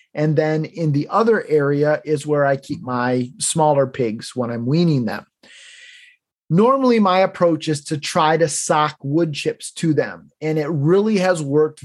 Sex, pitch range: male, 140-185 Hz